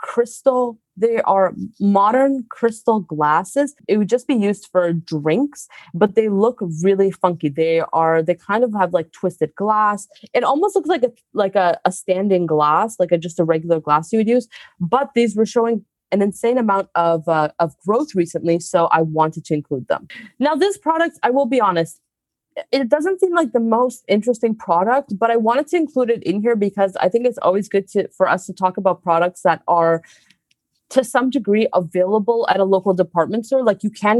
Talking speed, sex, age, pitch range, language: 200 wpm, female, 20-39, 175-230 Hz, English